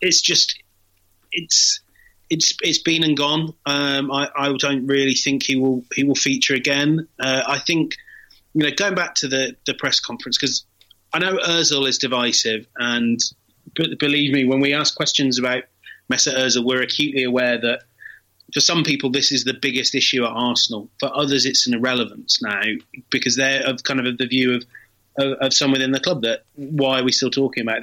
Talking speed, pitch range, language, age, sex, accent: 195 wpm, 120-150 Hz, English, 30-49, male, British